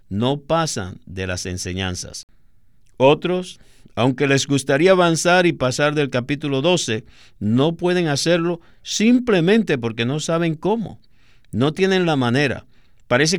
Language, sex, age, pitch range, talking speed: Spanish, male, 50-69, 110-170 Hz, 125 wpm